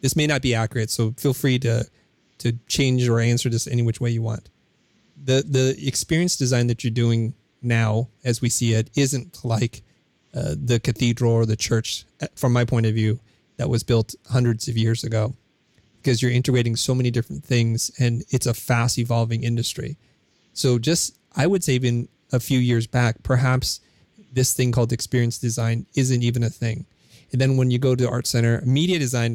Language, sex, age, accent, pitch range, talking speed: English, male, 30-49, American, 115-135 Hz, 190 wpm